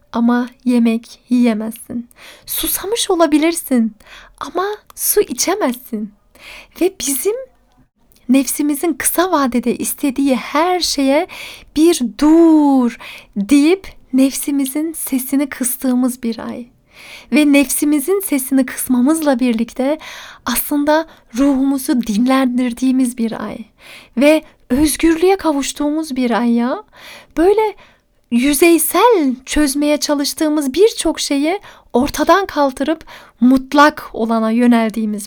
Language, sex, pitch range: Turkish, female, 240-300 Hz